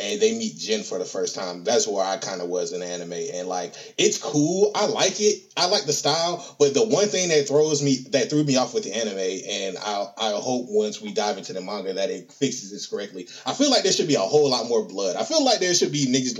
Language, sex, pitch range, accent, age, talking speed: English, male, 135-220 Hz, American, 20-39, 275 wpm